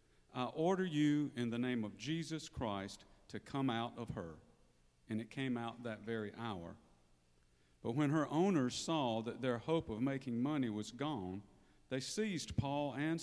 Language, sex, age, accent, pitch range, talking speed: English, male, 50-69, American, 110-145 Hz, 170 wpm